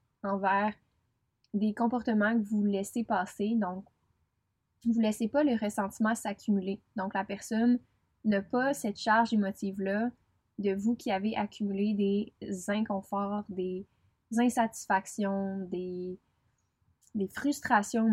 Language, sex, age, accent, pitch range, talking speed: French, female, 20-39, Canadian, 195-230 Hz, 115 wpm